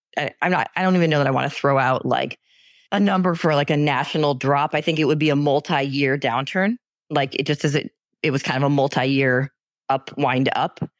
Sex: female